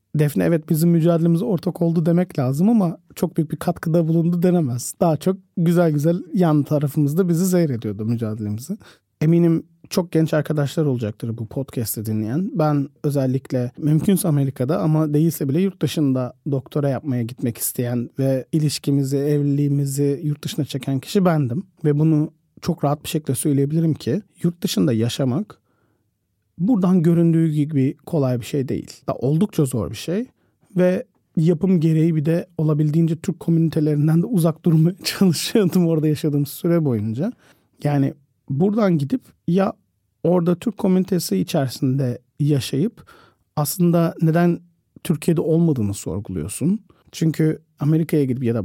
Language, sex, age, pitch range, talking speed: Turkish, male, 40-59, 135-175 Hz, 135 wpm